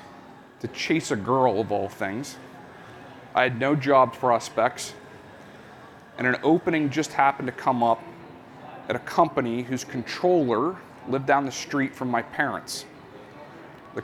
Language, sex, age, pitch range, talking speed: English, male, 40-59, 125-155 Hz, 135 wpm